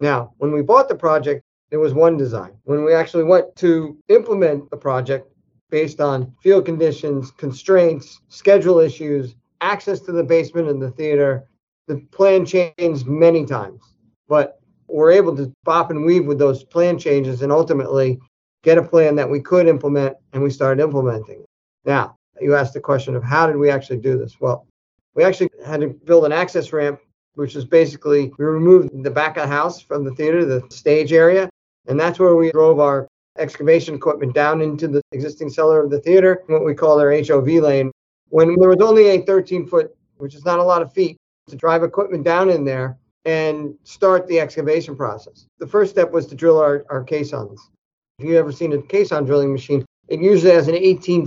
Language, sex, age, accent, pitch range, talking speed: English, male, 50-69, American, 140-170 Hz, 195 wpm